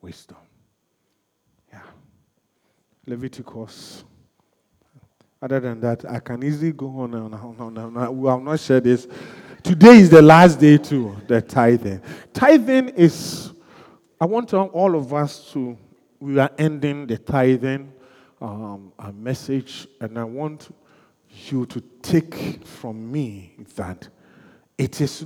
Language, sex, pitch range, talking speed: English, male, 120-165 Hz, 130 wpm